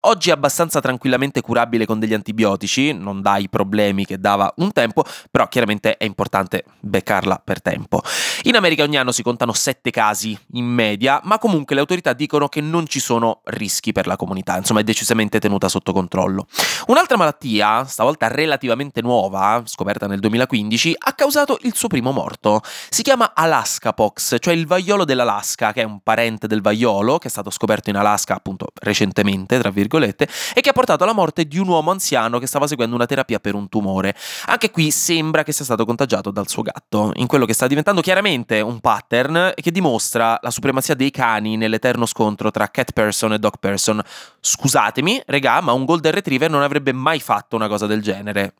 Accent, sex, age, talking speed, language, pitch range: native, male, 20-39, 190 wpm, Italian, 110-155 Hz